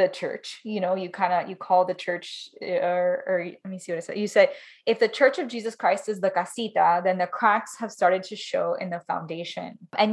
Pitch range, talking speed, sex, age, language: 170-210 Hz, 235 wpm, female, 10-29, English